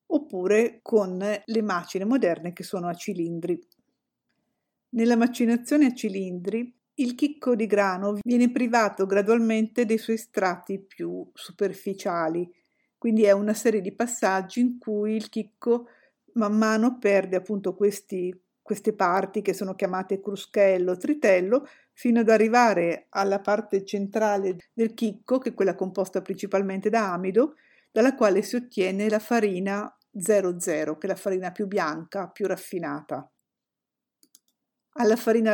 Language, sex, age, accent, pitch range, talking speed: Italian, female, 50-69, native, 190-235 Hz, 135 wpm